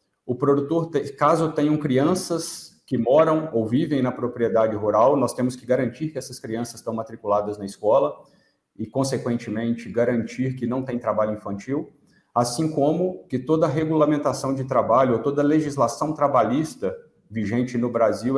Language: Portuguese